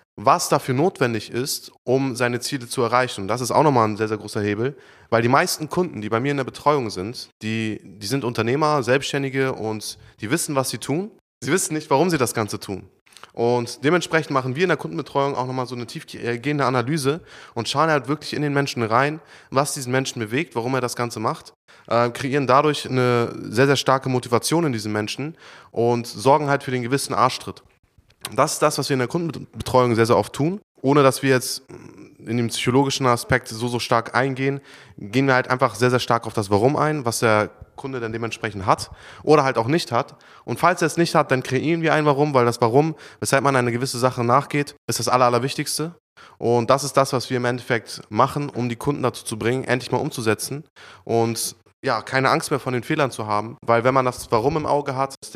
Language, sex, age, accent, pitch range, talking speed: German, male, 20-39, German, 115-145 Hz, 220 wpm